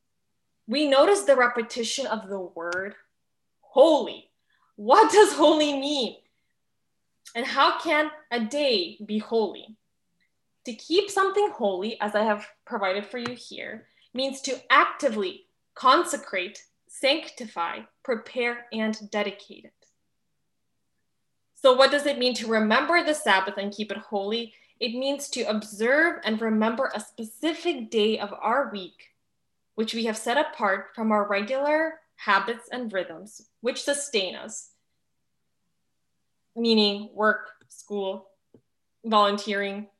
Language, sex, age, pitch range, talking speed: English, female, 10-29, 210-275 Hz, 125 wpm